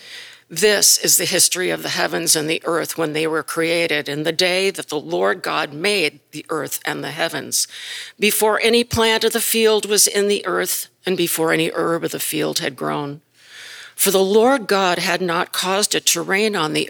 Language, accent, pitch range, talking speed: English, American, 165-215 Hz, 205 wpm